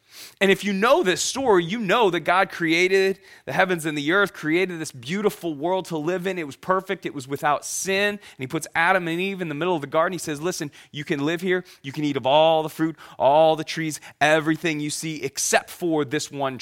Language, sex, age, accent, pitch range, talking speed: English, male, 30-49, American, 145-195 Hz, 240 wpm